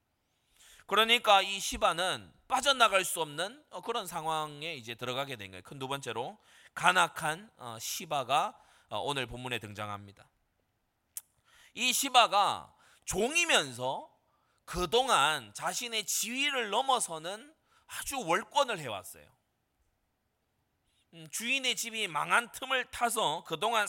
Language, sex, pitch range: Korean, male, 145-220 Hz